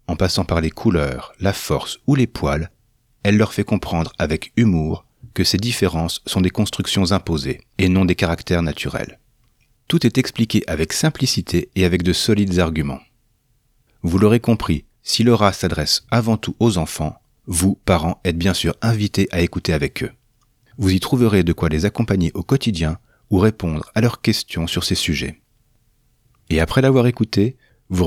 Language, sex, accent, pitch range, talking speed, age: French, male, French, 90-120 Hz, 175 wpm, 40-59